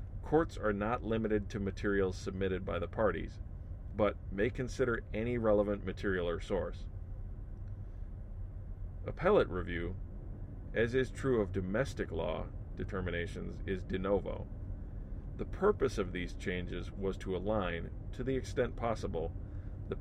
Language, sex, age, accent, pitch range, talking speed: English, male, 40-59, American, 95-105 Hz, 130 wpm